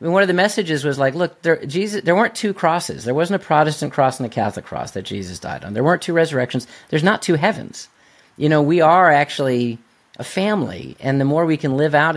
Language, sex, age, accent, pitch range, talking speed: English, male, 40-59, American, 120-155 Hz, 230 wpm